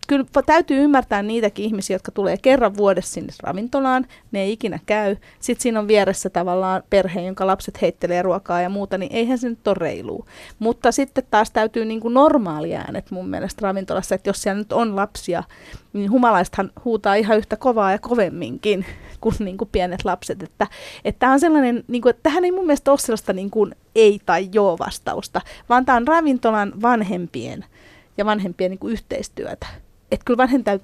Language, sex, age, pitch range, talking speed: Finnish, female, 30-49, 190-230 Hz, 175 wpm